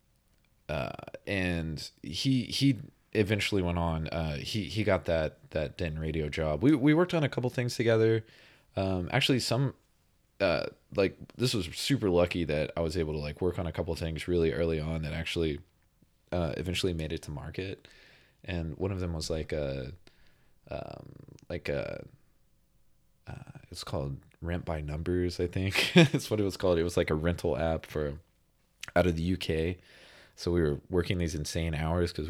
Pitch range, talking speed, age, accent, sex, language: 80-105 Hz, 180 wpm, 20-39, American, male, English